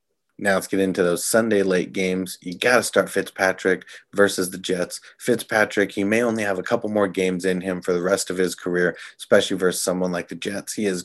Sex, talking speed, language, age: male, 225 wpm, English, 30-49